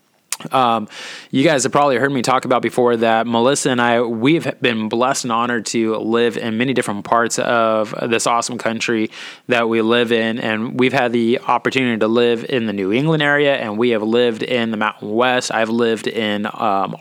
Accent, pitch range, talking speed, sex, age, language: American, 110-125 Hz, 200 wpm, male, 20-39, English